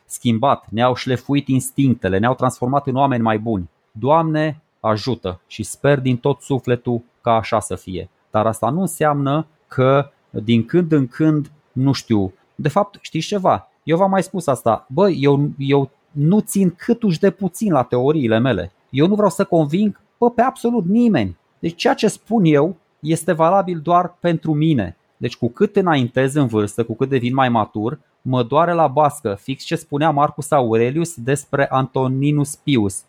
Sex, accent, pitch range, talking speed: male, native, 120-165 Hz, 170 wpm